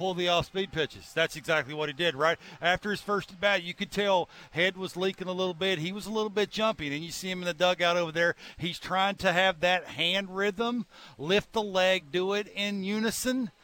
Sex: male